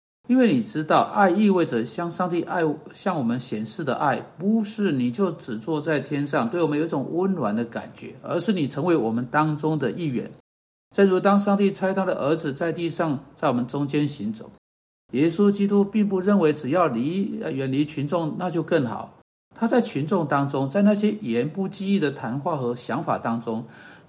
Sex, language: male, Chinese